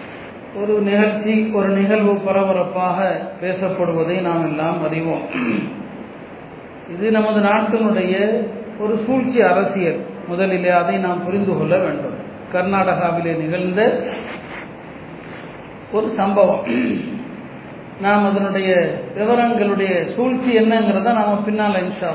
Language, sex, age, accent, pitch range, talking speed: Tamil, male, 40-59, native, 195-225 Hz, 90 wpm